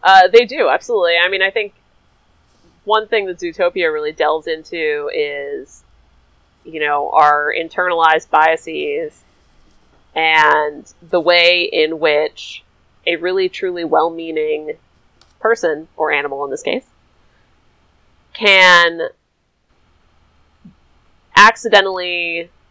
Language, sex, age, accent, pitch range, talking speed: English, female, 30-49, American, 155-190 Hz, 100 wpm